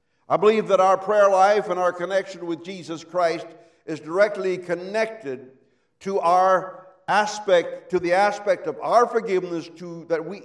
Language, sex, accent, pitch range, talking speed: English, male, American, 165-205 Hz, 150 wpm